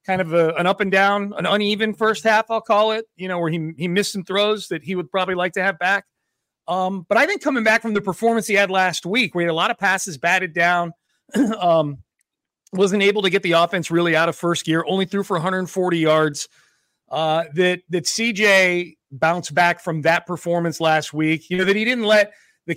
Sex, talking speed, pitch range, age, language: male, 230 wpm, 155-200 Hz, 30-49, English